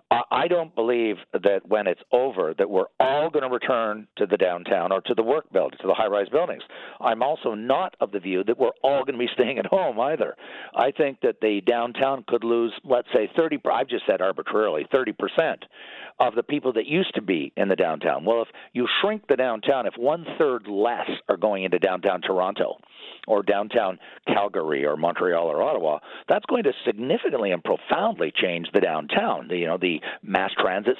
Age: 50-69